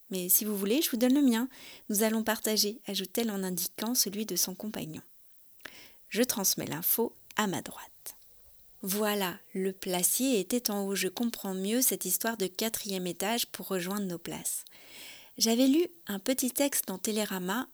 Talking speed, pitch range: 175 wpm, 190-240 Hz